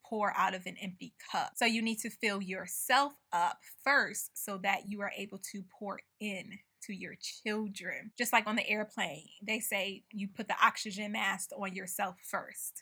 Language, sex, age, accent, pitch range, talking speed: English, female, 20-39, American, 195-225 Hz, 185 wpm